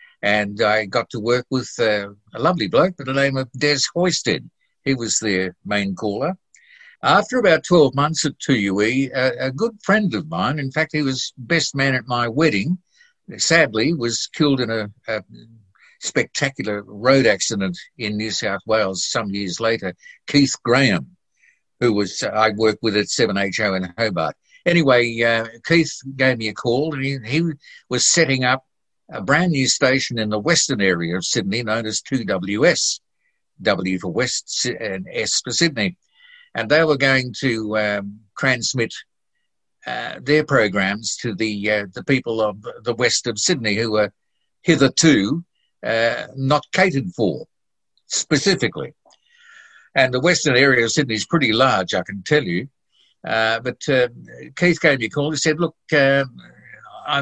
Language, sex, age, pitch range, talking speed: English, male, 60-79, 110-155 Hz, 165 wpm